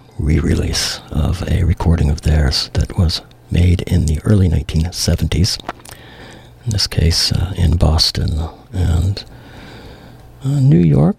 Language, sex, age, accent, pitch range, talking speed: English, male, 60-79, American, 85-120 Hz, 125 wpm